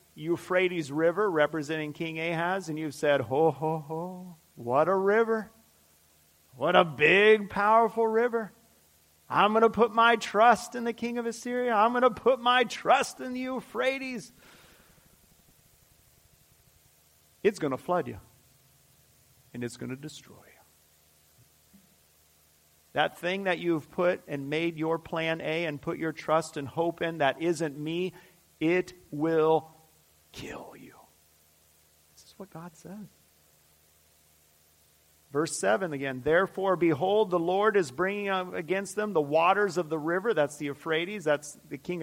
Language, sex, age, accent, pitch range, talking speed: English, male, 40-59, American, 120-200 Hz, 145 wpm